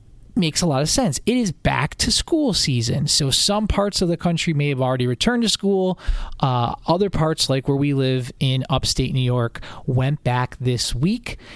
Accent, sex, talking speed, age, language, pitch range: American, male, 195 wpm, 20-39, English, 130-165 Hz